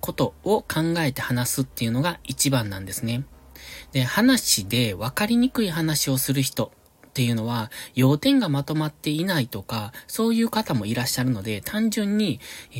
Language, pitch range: Japanese, 110-165 Hz